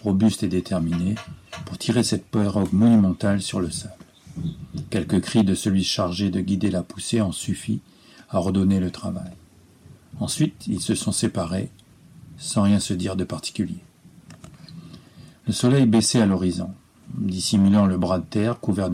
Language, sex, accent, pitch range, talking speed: French, male, French, 95-110 Hz, 150 wpm